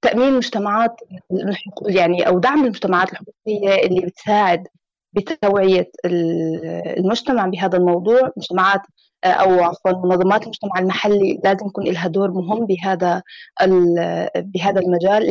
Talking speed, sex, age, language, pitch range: 110 wpm, female, 20-39, Arabic, 190-220 Hz